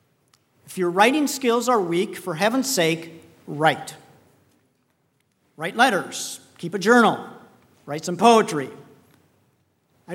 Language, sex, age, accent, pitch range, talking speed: English, male, 50-69, American, 165-210 Hz, 110 wpm